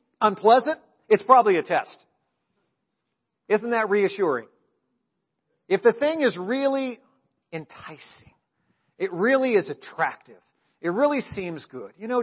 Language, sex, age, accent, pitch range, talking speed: English, male, 50-69, American, 150-225 Hz, 120 wpm